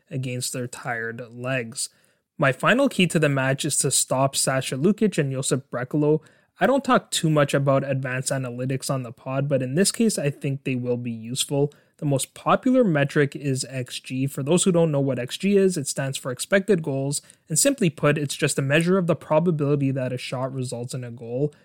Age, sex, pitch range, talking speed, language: 20-39, male, 130-155 Hz, 210 wpm, English